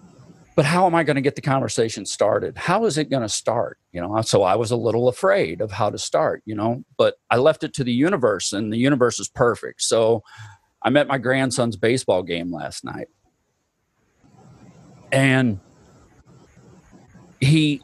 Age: 40-59